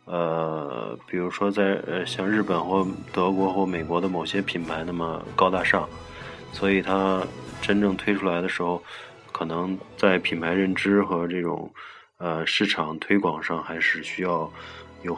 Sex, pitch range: male, 85-95 Hz